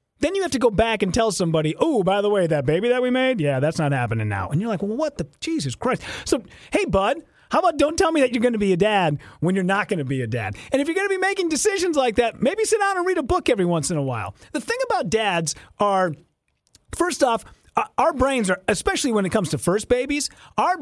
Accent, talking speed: American, 270 wpm